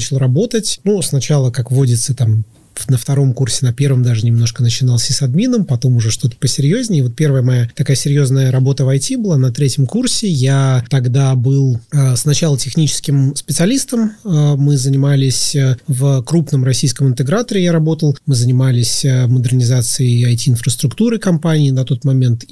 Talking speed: 150 wpm